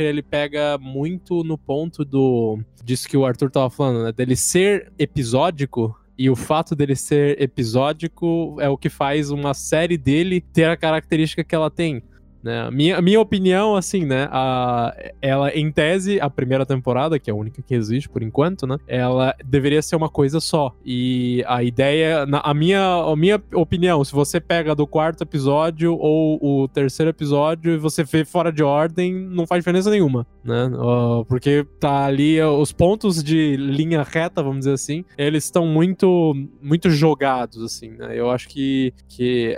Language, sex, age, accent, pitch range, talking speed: Portuguese, male, 20-39, Brazilian, 130-165 Hz, 175 wpm